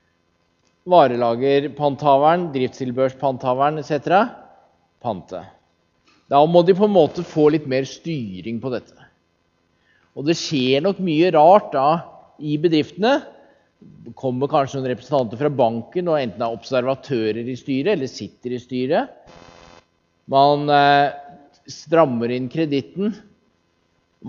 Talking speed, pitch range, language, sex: 125 wpm, 105-150 Hz, English, male